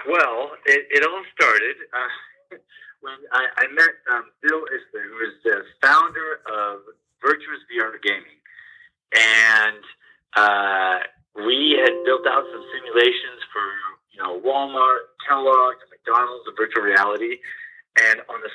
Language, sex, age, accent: English, male, 30-49, American